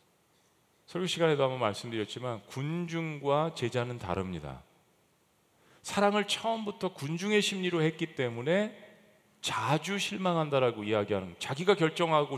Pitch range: 120-180 Hz